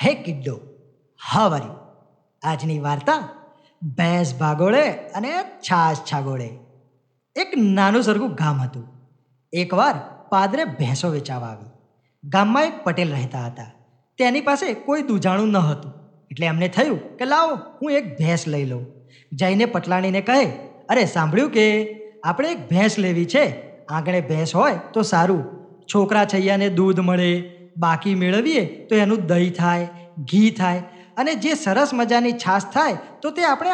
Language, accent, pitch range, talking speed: Gujarati, native, 160-250 Hz, 105 wpm